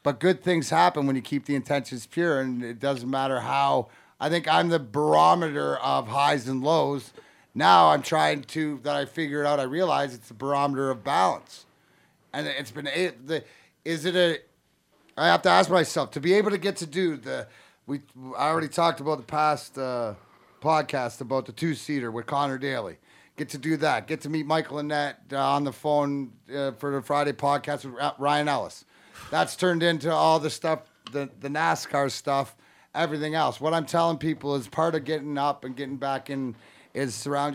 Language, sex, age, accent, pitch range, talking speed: English, male, 30-49, American, 130-155 Hz, 195 wpm